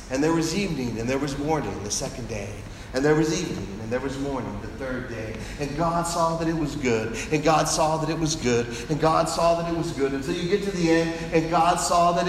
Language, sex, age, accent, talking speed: English, male, 40-59, American, 265 wpm